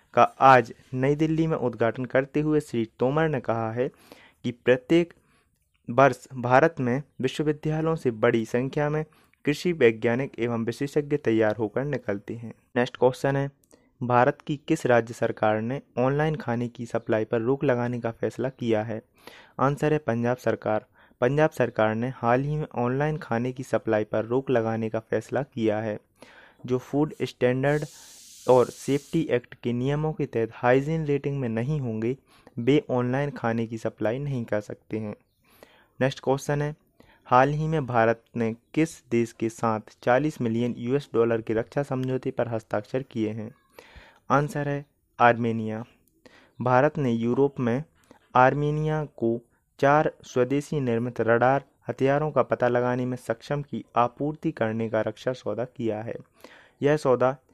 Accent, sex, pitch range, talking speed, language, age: native, male, 115-140 Hz, 155 wpm, Hindi, 20-39